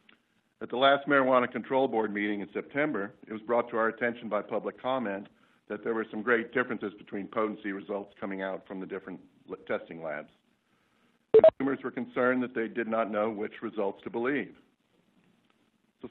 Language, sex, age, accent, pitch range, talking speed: English, male, 60-79, American, 100-125 Hz, 175 wpm